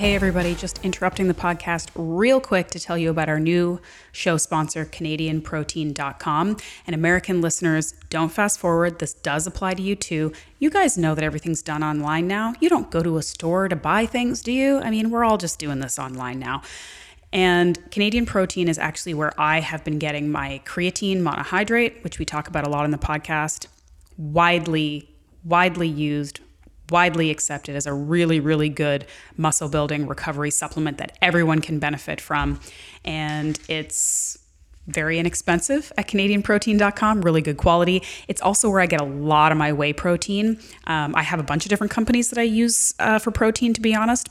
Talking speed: 185 wpm